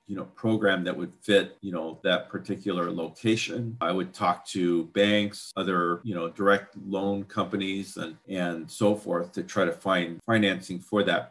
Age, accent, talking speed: 40-59, American, 175 wpm